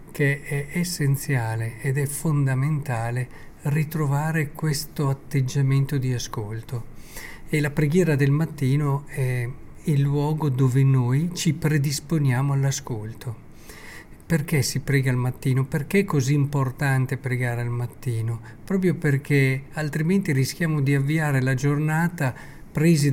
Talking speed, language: 115 wpm, Italian